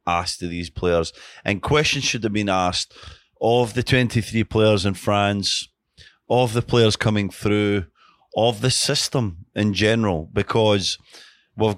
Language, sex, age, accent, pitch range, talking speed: English, male, 30-49, British, 90-105 Hz, 145 wpm